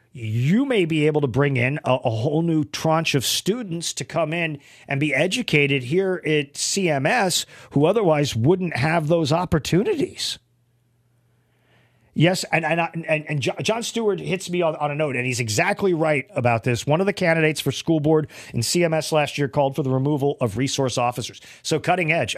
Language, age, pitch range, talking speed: English, 40-59, 120-160 Hz, 185 wpm